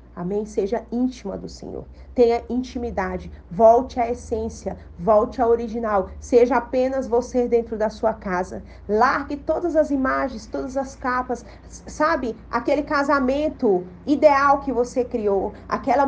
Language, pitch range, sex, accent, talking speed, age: Portuguese, 210-265 Hz, female, Brazilian, 130 wpm, 40-59